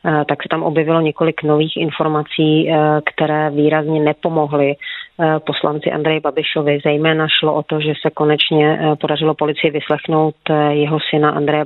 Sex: female